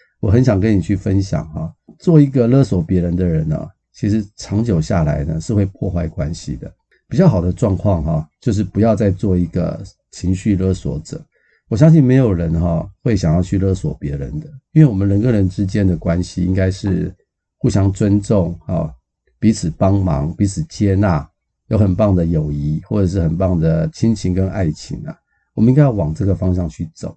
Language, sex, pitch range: Chinese, male, 85-110 Hz